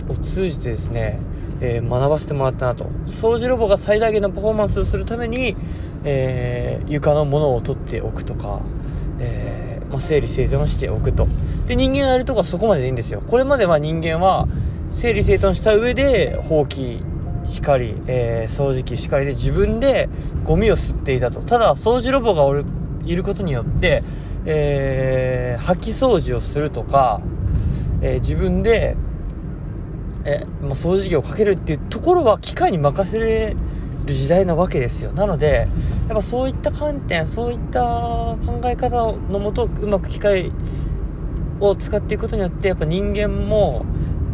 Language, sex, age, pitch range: Japanese, male, 20-39, 115-180 Hz